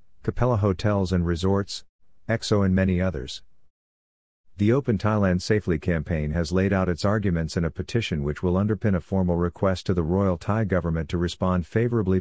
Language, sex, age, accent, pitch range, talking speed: English, male, 50-69, American, 85-100 Hz, 170 wpm